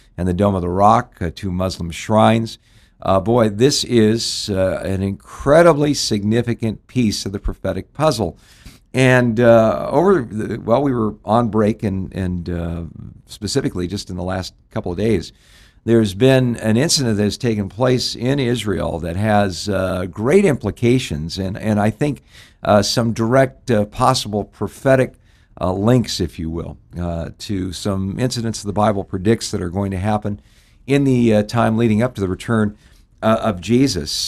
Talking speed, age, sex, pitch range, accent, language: 170 wpm, 60-79, male, 95-115 Hz, American, English